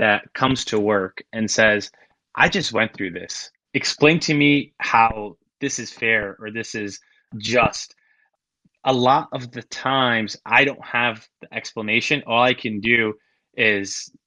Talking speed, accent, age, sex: 155 wpm, American, 20-39, male